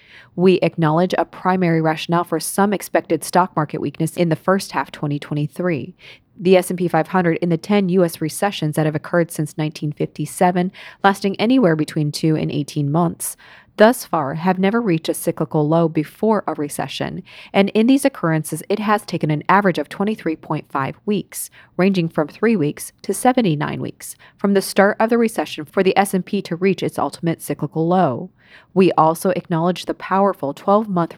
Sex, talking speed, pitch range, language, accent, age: female, 165 wpm, 160-200 Hz, English, American, 30-49